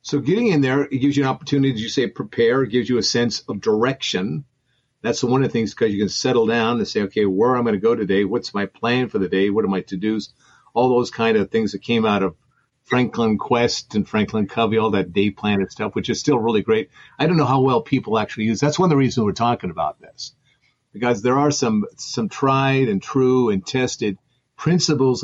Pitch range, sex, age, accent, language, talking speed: 110-140 Hz, male, 50-69, American, English, 245 wpm